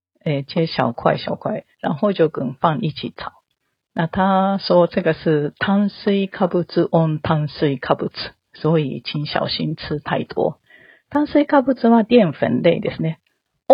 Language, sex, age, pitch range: Japanese, female, 40-59, 150-205 Hz